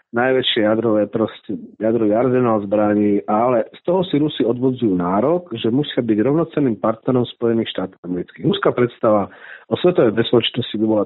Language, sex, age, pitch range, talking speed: Slovak, male, 40-59, 110-135 Hz, 150 wpm